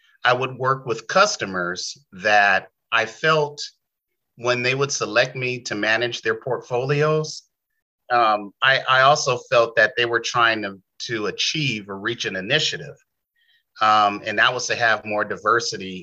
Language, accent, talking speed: English, American, 155 wpm